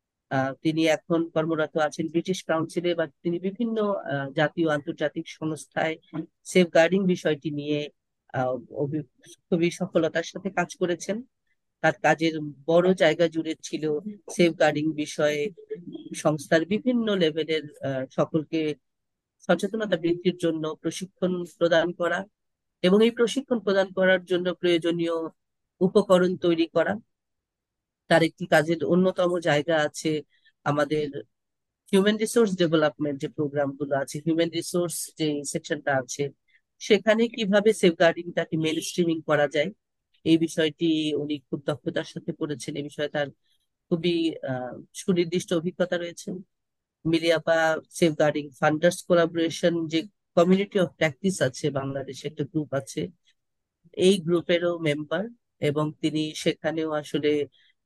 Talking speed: 65 wpm